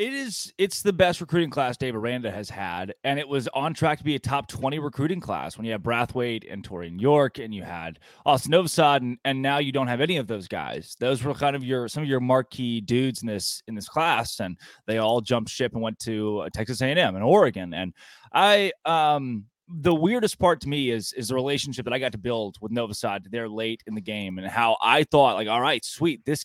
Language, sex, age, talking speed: English, male, 20-39, 245 wpm